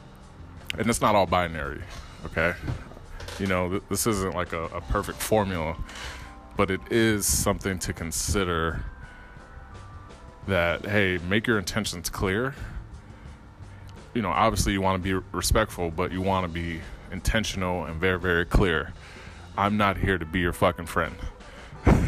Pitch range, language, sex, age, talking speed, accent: 85-105 Hz, English, male, 20-39, 150 wpm, American